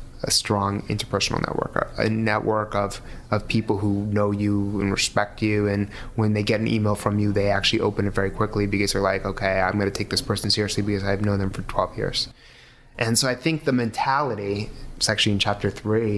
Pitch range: 100-120 Hz